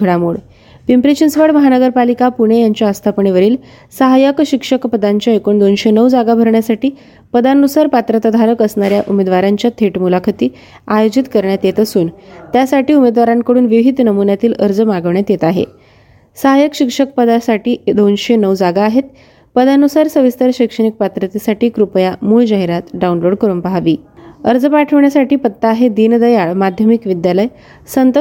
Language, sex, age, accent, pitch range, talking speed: Marathi, female, 20-39, native, 200-250 Hz, 125 wpm